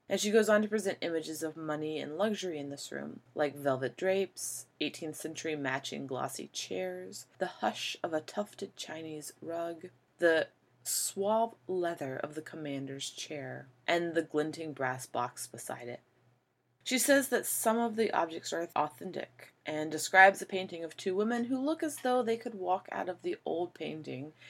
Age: 20-39